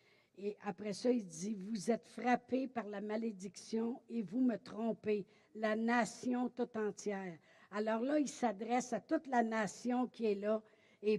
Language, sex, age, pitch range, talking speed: French, female, 60-79, 210-260 Hz, 175 wpm